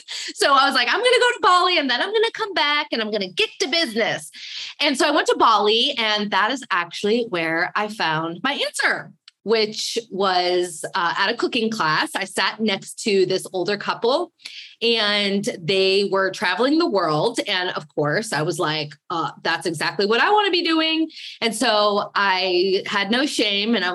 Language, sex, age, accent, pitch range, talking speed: English, female, 20-39, American, 185-255 Hz, 195 wpm